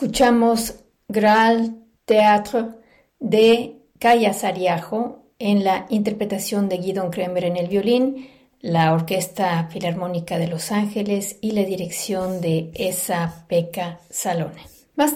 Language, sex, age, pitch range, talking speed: Spanish, female, 40-59, 175-225 Hz, 115 wpm